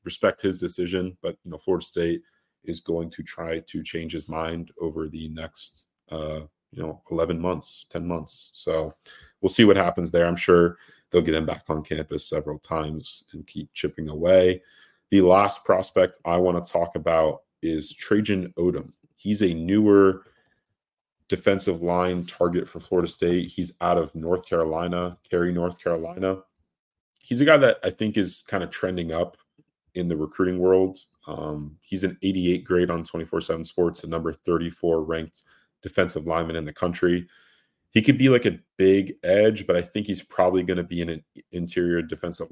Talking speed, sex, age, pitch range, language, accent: 180 wpm, male, 30-49, 80-90 Hz, English, American